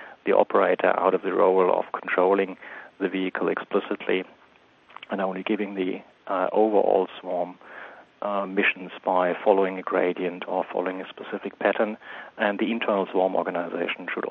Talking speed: 145 wpm